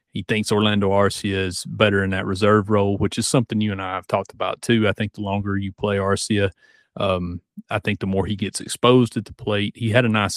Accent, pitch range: American, 95-110 Hz